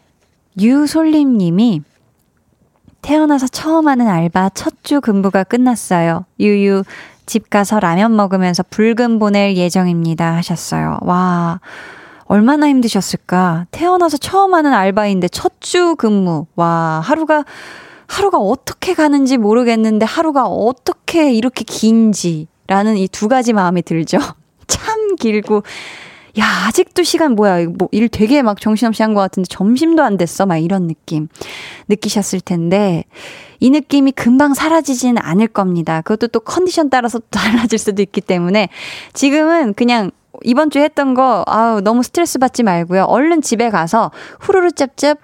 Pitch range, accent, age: 190-280 Hz, native, 20-39